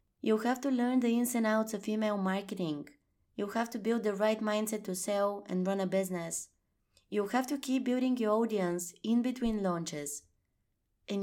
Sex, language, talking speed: female, English, 185 wpm